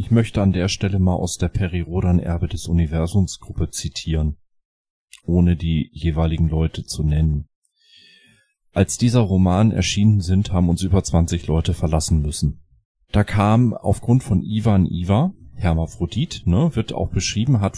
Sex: male